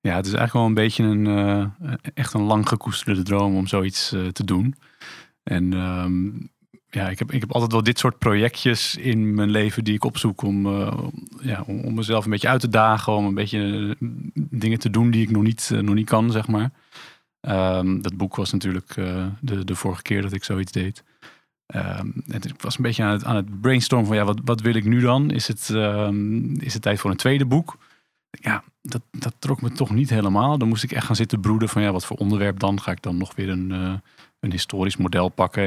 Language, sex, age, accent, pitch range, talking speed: Dutch, male, 40-59, Dutch, 95-120 Hz, 230 wpm